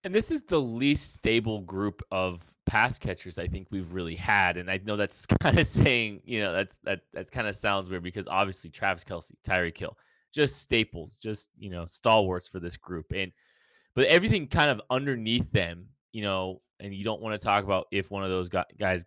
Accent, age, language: American, 20-39, English